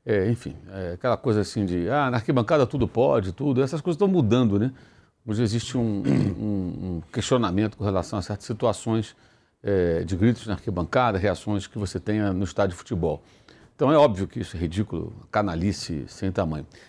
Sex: male